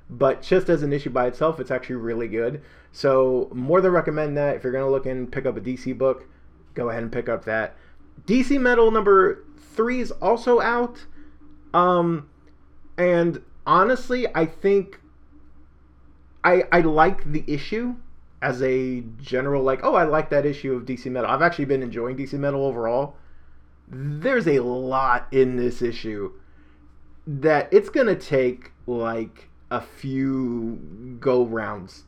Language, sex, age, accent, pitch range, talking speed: English, male, 30-49, American, 120-175 Hz, 155 wpm